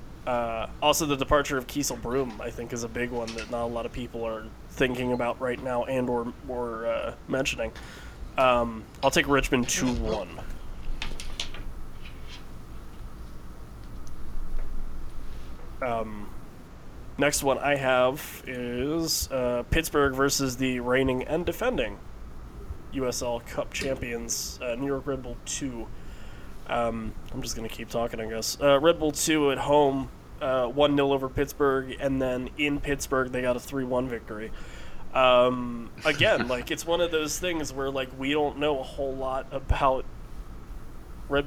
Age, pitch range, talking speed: 20-39, 115-140 Hz, 150 wpm